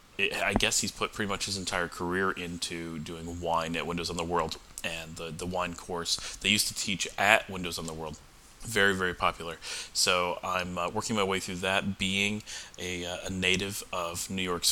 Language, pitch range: English, 85-95 Hz